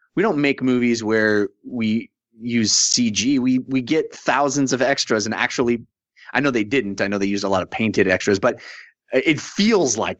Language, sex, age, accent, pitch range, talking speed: English, male, 30-49, American, 110-150 Hz, 200 wpm